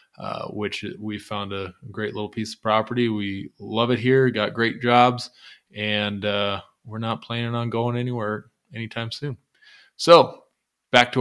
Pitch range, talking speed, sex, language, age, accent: 105-125 Hz, 160 wpm, male, English, 20-39, American